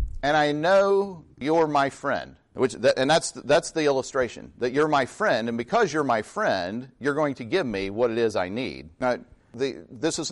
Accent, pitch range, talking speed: American, 110-150 Hz, 205 wpm